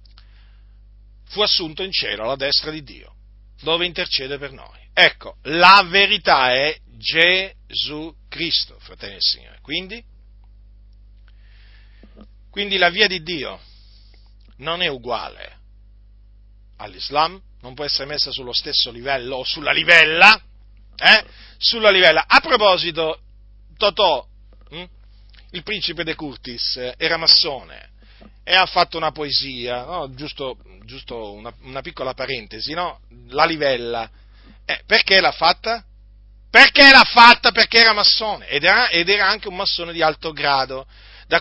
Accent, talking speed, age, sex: native, 130 wpm, 40-59, male